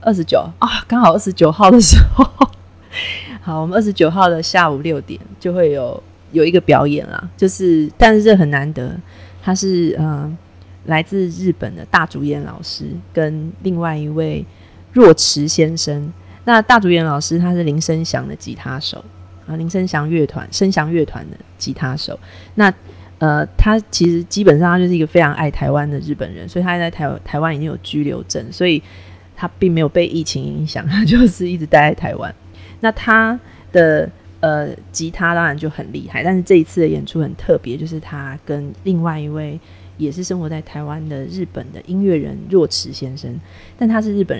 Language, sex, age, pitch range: Chinese, female, 30-49, 135-180 Hz